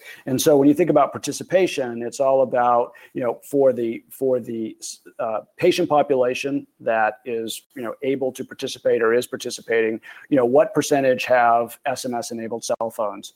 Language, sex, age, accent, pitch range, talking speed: English, male, 40-59, American, 120-145 Hz, 165 wpm